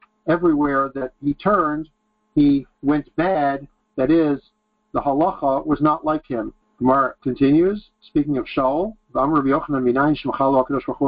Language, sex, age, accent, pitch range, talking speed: English, male, 50-69, American, 130-215 Hz, 115 wpm